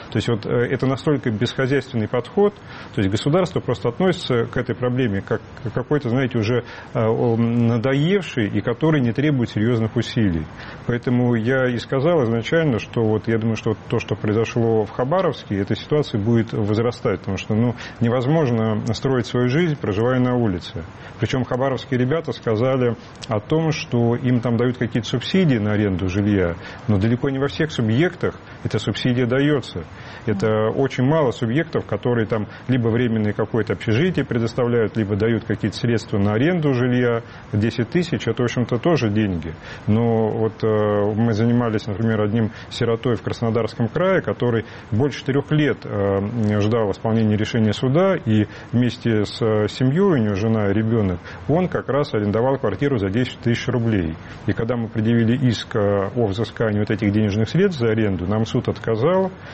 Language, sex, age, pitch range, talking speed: Russian, male, 30-49, 110-130 Hz, 155 wpm